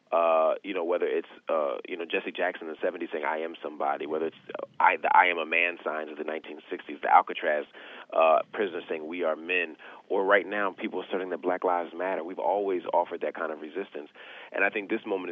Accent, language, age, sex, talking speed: American, English, 30-49, male, 235 wpm